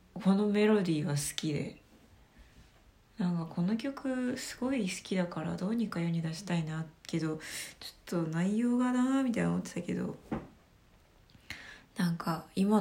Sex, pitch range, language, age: female, 155-220 Hz, Japanese, 20-39